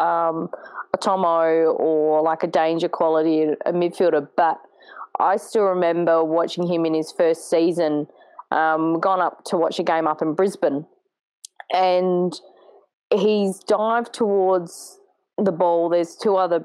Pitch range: 170-220 Hz